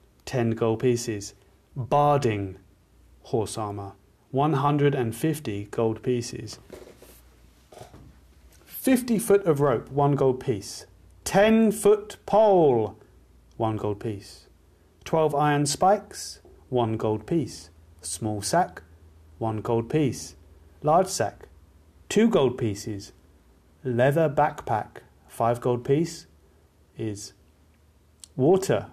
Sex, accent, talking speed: male, British, 95 wpm